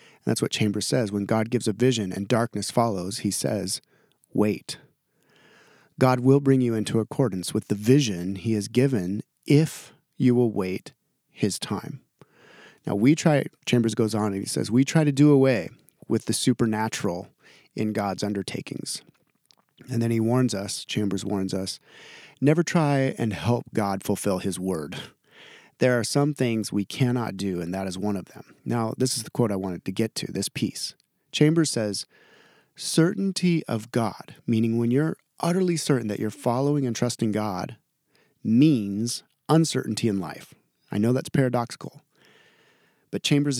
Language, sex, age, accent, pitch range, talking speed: English, male, 30-49, American, 105-140 Hz, 165 wpm